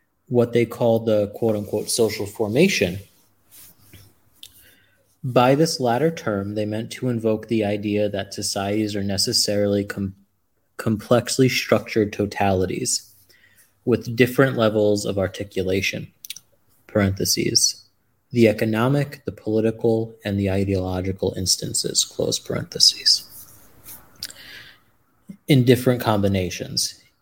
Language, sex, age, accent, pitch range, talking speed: English, male, 30-49, American, 100-120 Hz, 95 wpm